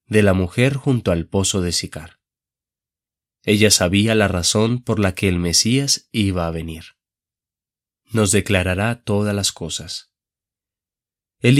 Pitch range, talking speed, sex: 90-110 Hz, 135 wpm, male